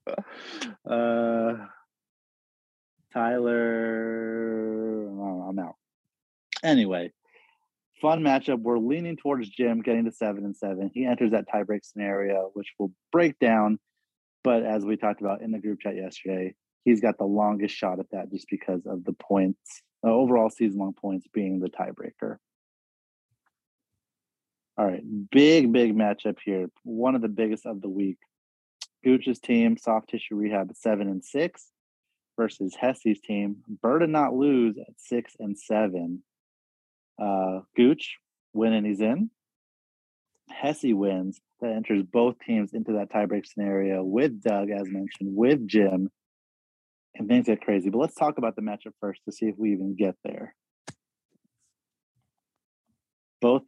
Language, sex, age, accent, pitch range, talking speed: English, male, 30-49, American, 100-120 Hz, 140 wpm